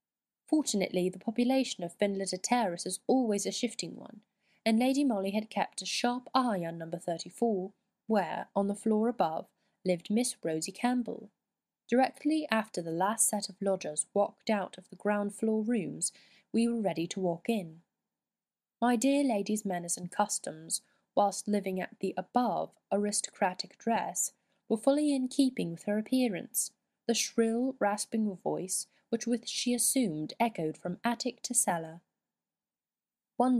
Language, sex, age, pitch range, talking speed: English, female, 10-29, 190-240 Hz, 150 wpm